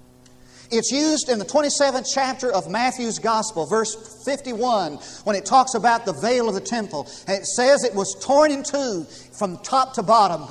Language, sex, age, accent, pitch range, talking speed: English, male, 50-69, American, 190-260 Hz, 185 wpm